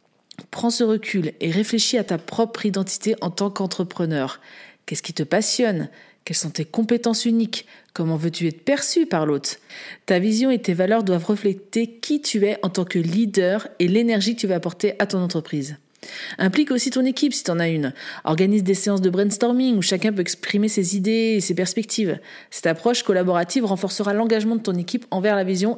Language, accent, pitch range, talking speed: French, French, 180-225 Hz, 195 wpm